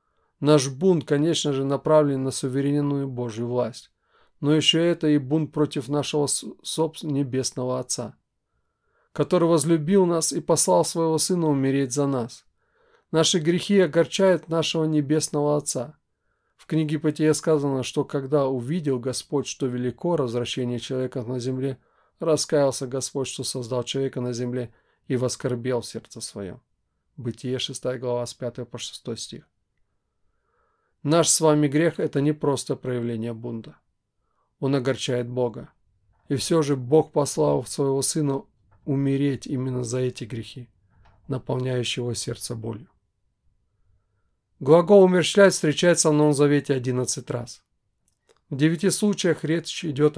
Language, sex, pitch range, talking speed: Russian, male, 125-155 Hz, 130 wpm